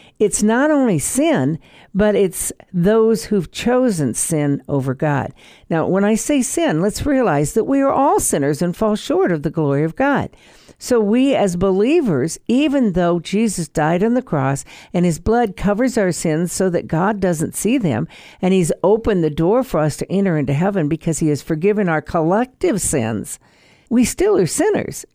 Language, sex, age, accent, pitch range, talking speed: English, female, 60-79, American, 155-230 Hz, 185 wpm